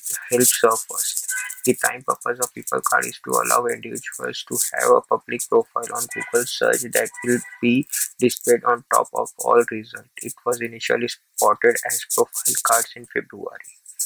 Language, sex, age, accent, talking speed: English, male, 20-39, Indian, 160 wpm